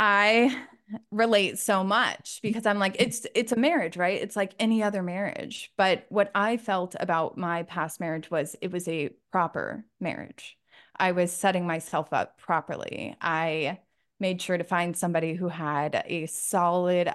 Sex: female